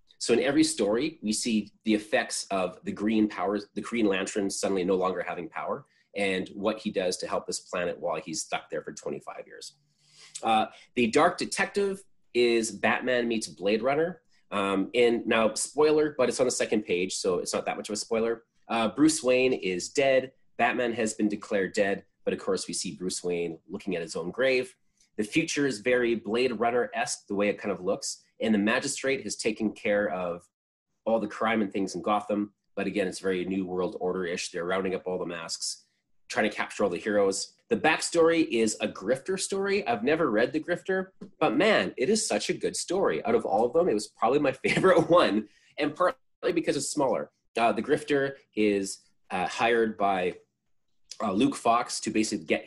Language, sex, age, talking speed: English, male, 30-49, 205 wpm